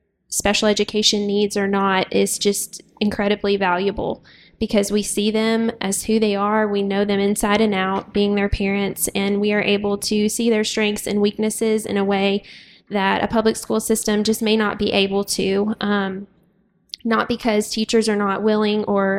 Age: 10-29